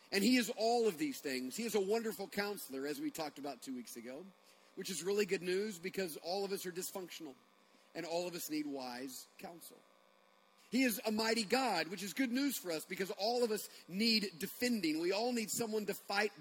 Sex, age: male, 40-59